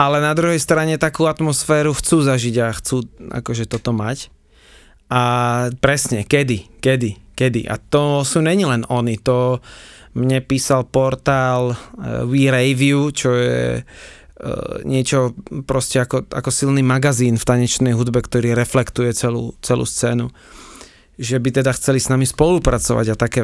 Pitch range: 120-145 Hz